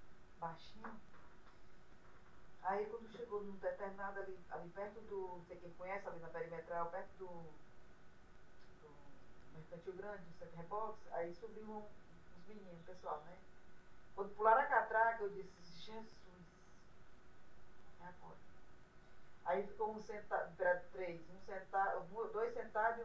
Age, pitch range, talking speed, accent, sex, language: 20-39, 180-220 Hz, 135 wpm, Brazilian, female, Portuguese